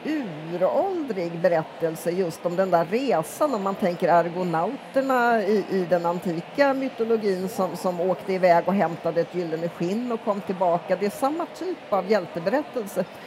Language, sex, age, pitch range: Swedish, female, 50-69, 175-235 Hz